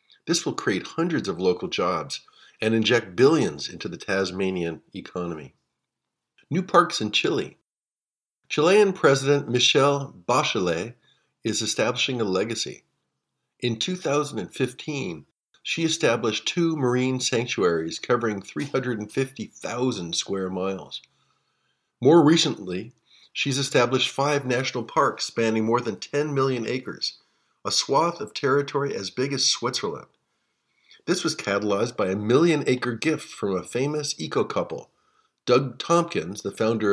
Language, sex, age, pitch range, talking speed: English, male, 50-69, 105-140 Hz, 120 wpm